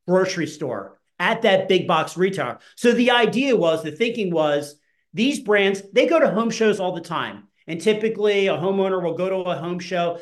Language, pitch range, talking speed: English, 190-230 Hz, 200 wpm